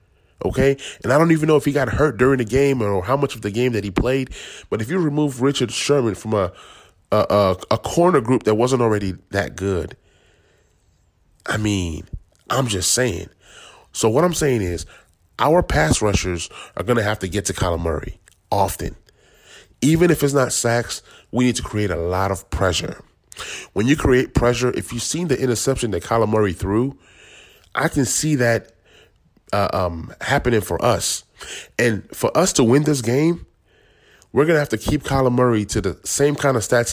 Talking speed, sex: 190 wpm, male